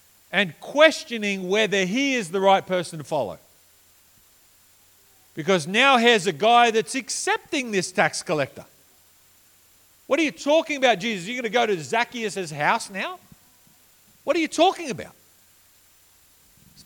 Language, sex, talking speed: English, male, 140 wpm